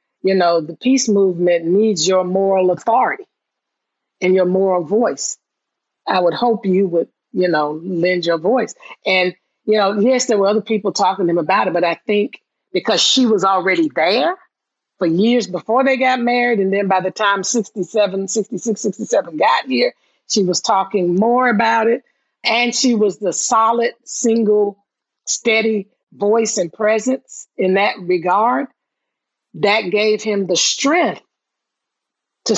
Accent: American